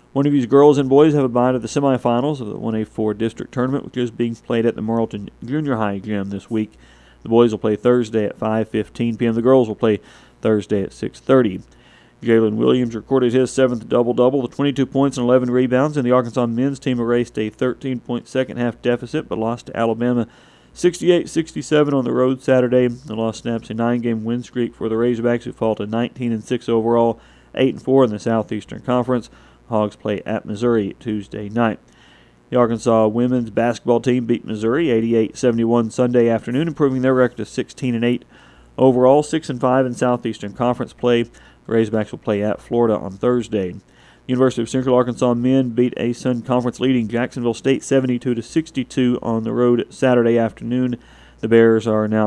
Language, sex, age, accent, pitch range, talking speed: English, male, 40-59, American, 110-130 Hz, 170 wpm